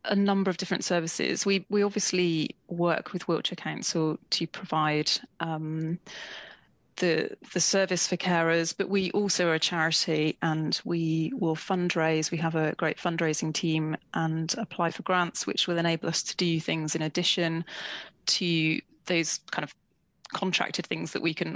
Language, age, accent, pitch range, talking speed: English, 30-49, British, 160-185 Hz, 160 wpm